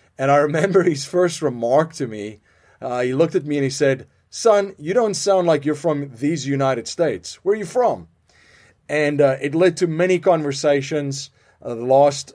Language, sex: English, male